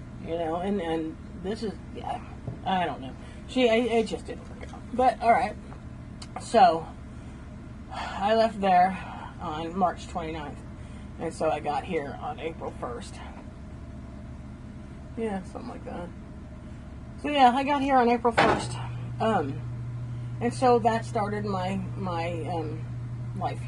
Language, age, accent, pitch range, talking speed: English, 40-59, American, 115-120 Hz, 140 wpm